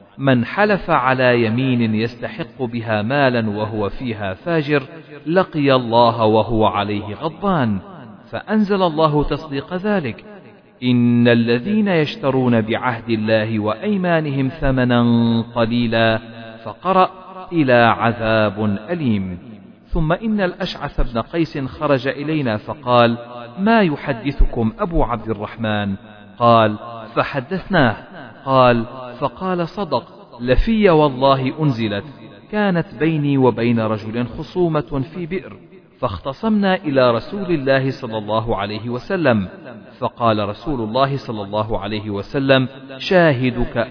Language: Arabic